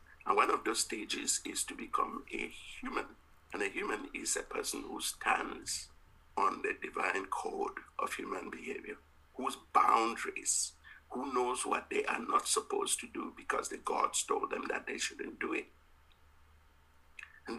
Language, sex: English, male